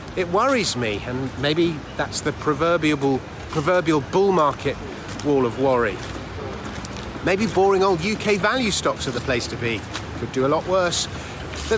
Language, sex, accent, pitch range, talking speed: English, male, British, 125-185 Hz, 160 wpm